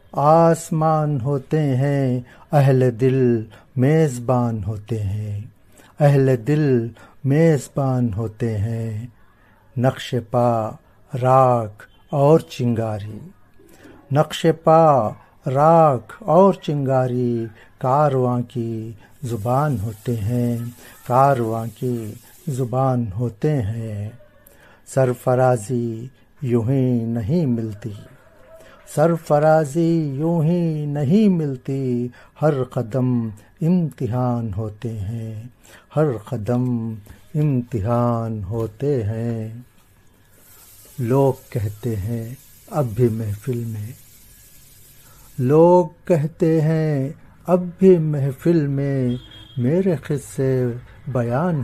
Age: 50-69